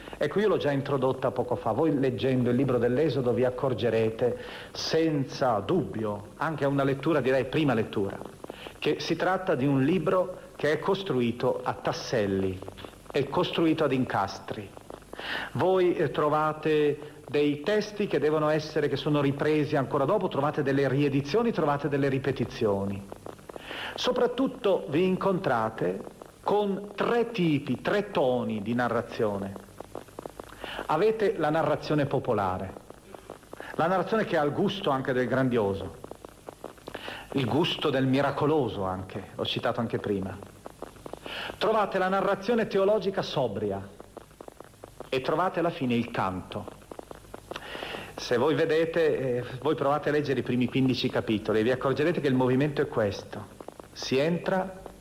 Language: Italian